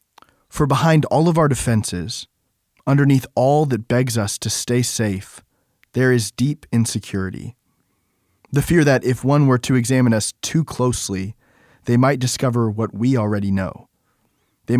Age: 20-39